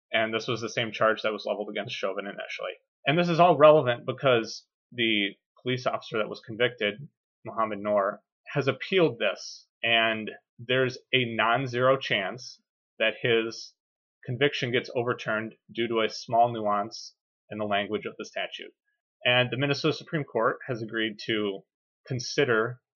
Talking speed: 155 wpm